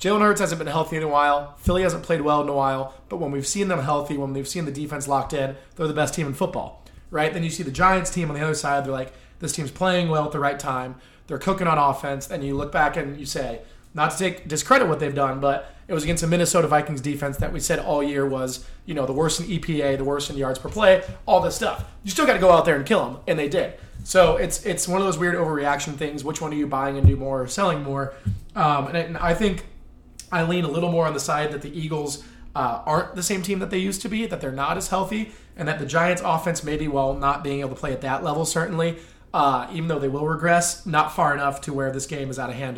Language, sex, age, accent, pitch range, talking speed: English, male, 20-39, American, 140-170 Hz, 285 wpm